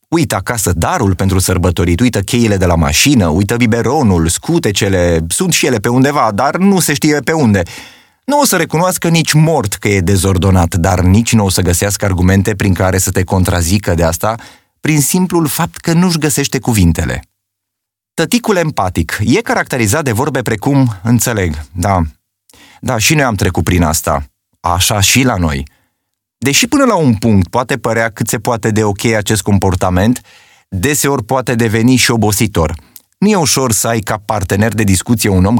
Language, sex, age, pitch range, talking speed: Romanian, male, 30-49, 95-140 Hz, 175 wpm